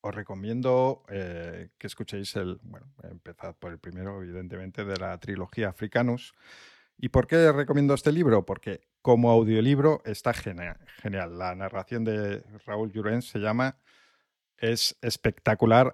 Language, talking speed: Spanish, 135 wpm